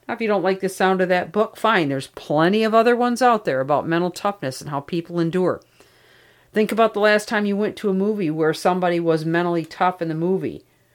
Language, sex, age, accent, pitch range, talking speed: English, female, 50-69, American, 160-195 Hz, 230 wpm